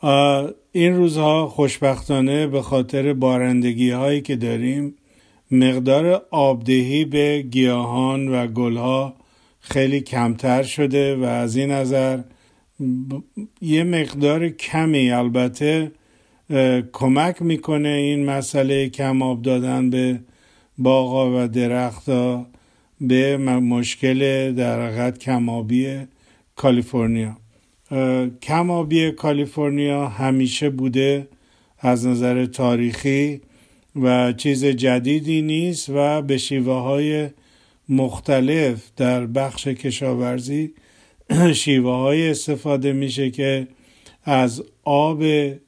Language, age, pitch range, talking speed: Persian, 50-69, 125-145 Hz, 90 wpm